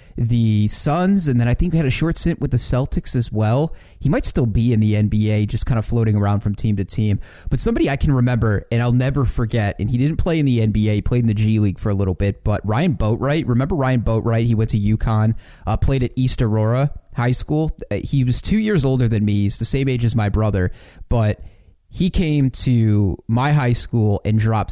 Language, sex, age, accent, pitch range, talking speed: English, male, 30-49, American, 105-130 Hz, 240 wpm